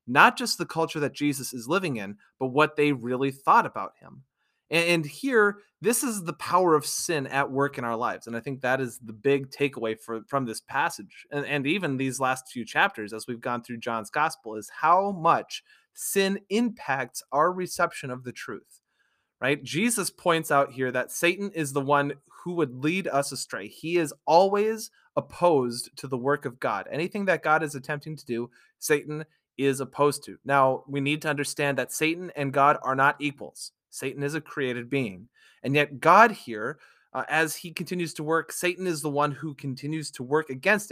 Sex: male